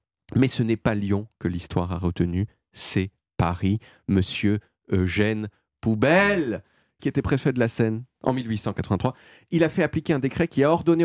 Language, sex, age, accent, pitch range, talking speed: French, male, 30-49, French, 110-145 Hz, 170 wpm